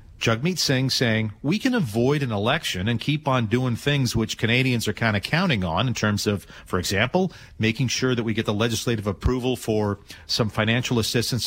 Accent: American